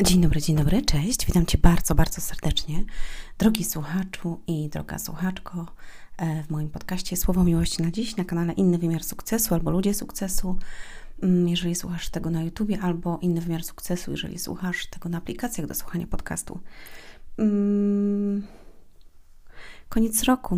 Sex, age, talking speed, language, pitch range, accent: female, 30-49, 145 wpm, Polish, 165-195 Hz, native